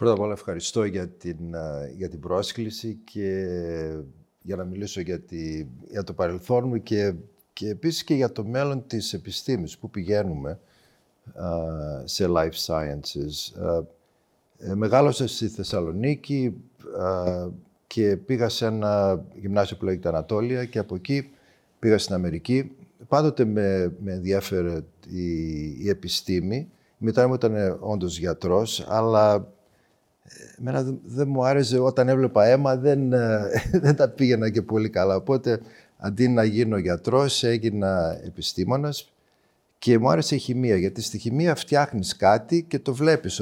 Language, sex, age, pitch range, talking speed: Greek, male, 50-69, 90-130 Hz, 135 wpm